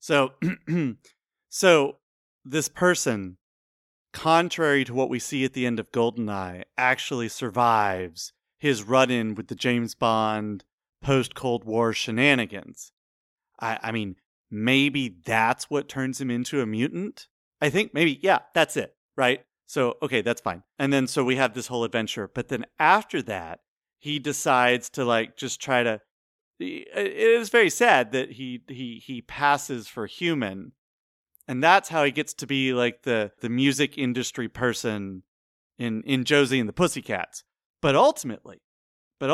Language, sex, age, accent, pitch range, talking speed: English, male, 30-49, American, 110-140 Hz, 150 wpm